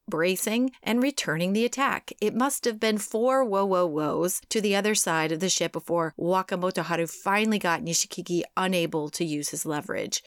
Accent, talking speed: American, 180 wpm